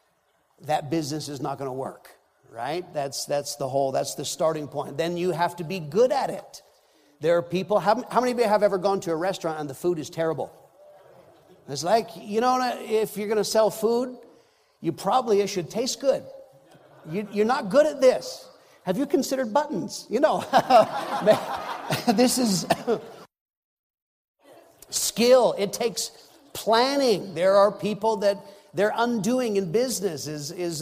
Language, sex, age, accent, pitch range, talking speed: English, male, 50-69, American, 155-220 Hz, 170 wpm